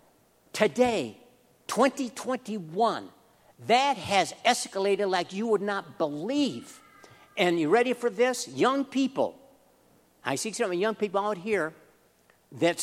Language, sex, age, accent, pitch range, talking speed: English, male, 60-79, American, 145-210 Hz, 115 wpm